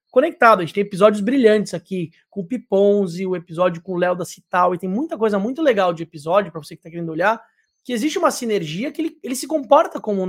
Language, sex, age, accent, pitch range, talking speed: Portuguese, male, 20-39, Brazilian, 190-235 Hz, 245 wpm